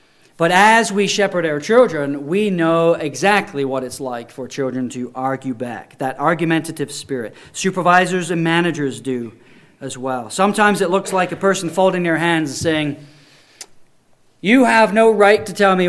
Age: 40-59